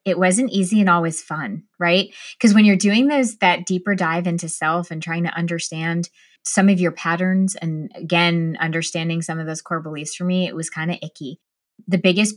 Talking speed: 205 wpm